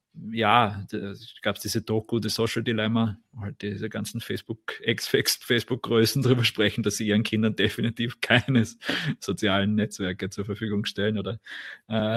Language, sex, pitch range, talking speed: German, male, 105-120 Hz, 150 wpm